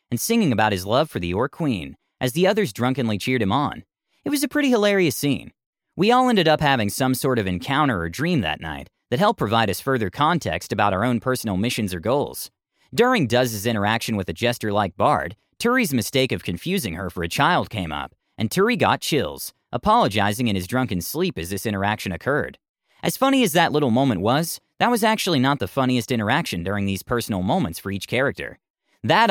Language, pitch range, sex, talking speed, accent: English, 105-175 Hz, male, 205 wpm, American